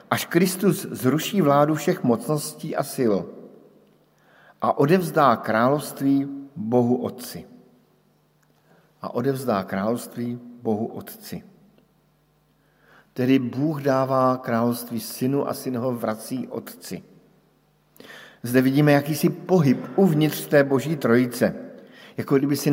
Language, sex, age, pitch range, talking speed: Slovak, male, 50-69, 125-150 Hz, 100 wpm